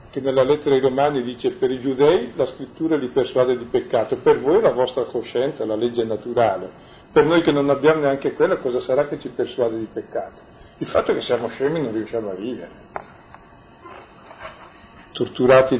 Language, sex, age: Italian, male, 50-69